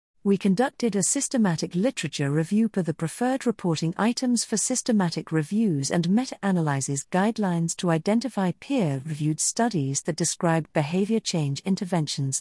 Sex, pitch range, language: female, 155-210 Hz, English